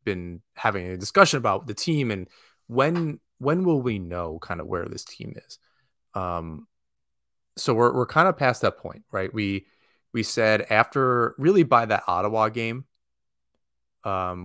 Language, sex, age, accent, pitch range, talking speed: English, male, 30-49, American, 90-115 Hz, 160 wpm